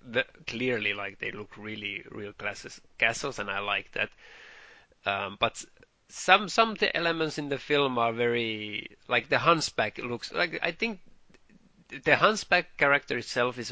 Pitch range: 110-145 Hz